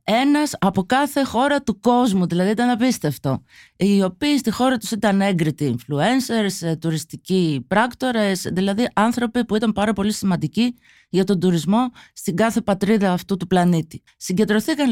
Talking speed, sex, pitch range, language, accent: 145 wpm, female, 175-245 Hz, Greek, native